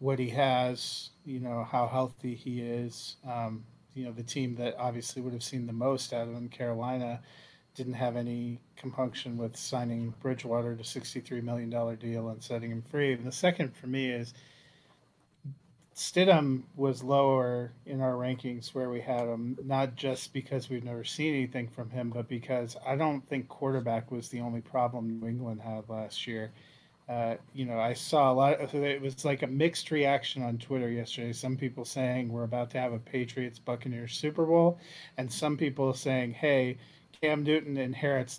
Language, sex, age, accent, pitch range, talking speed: English, male, 30-49, American, 120-135 Hz, 185 wpm